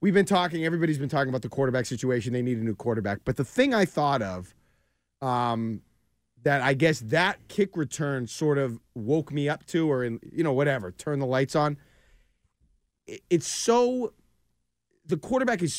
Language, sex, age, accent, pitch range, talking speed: English, male, 30-49, American, 135-205 Hz, 185 wpm